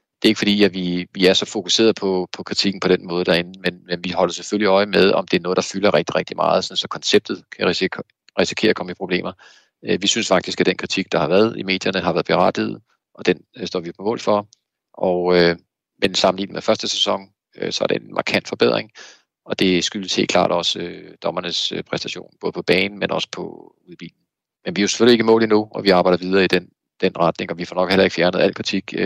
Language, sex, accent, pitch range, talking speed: Danish, male, native, 90-100 Hz, 250 wpm